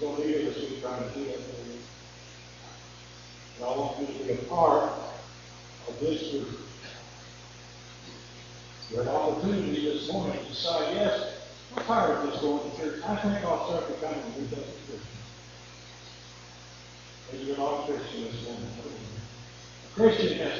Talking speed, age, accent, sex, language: 140 wpm, 50-69, American, male, English